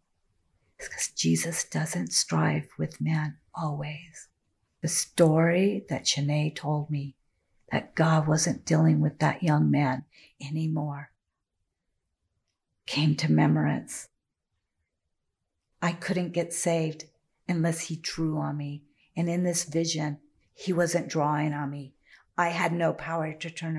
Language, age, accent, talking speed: English, 50-69, American, 125 wpm